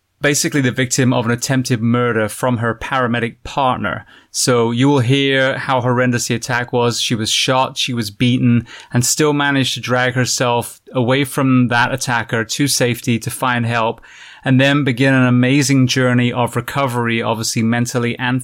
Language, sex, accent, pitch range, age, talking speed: English, male, British, 120-140 Hz, 30-49, 170 wpm